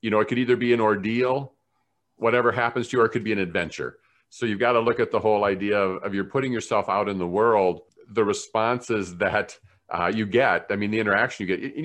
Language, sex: English, male